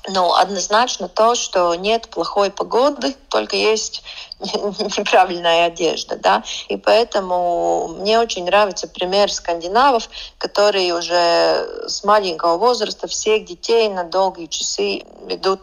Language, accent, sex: Russian, native, female